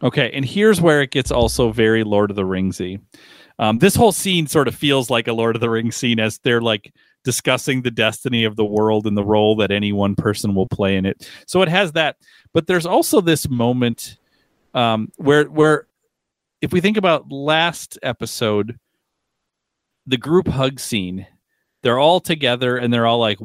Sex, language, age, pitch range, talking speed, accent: male, English, 40-59, 110-145 Hz, 195 wpm, American